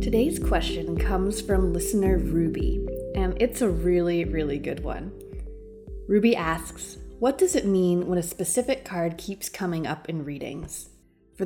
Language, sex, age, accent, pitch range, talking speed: English, female, 20-39, American, 170-225 Hz, 150 wpm